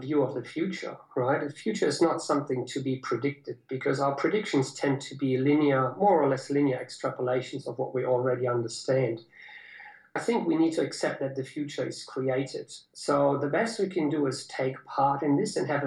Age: 50-69